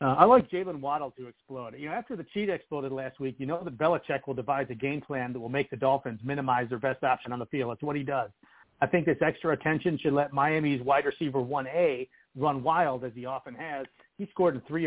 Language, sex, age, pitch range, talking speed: English, male, 40-59, 130-160 Hz, 250 wpm